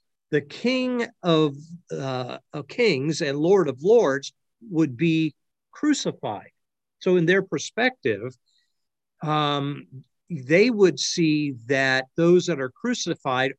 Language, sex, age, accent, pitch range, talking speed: English, male, 50-69, American, 135-185 Hz, 115 wpm